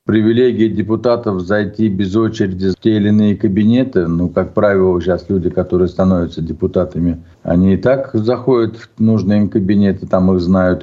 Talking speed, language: 160 wpm, Russian